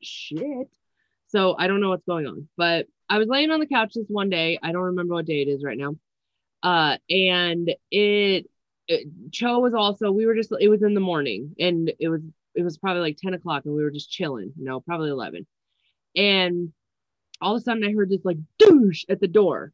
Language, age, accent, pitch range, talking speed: English, 20-39, American, 170-210 Hz, 220 wpm